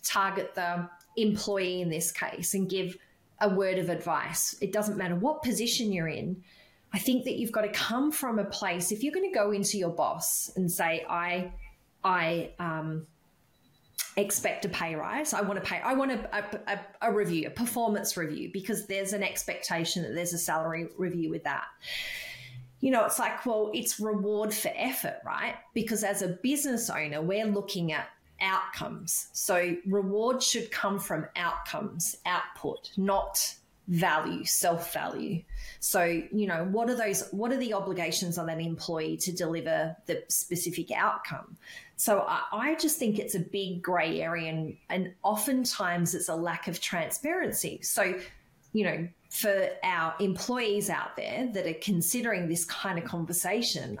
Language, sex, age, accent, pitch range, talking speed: English, female, 30-49, Australian, 170-215 Hz, 165 wpm